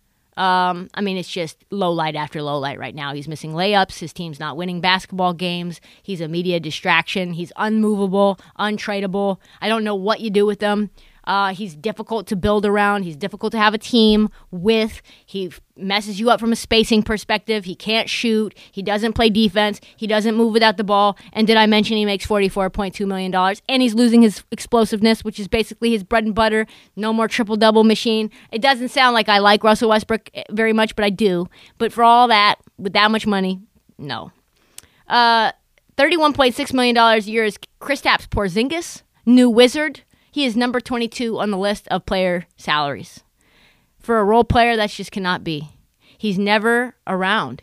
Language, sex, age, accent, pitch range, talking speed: English, female, 20-39, American, 195-225 Hz, 190 wpm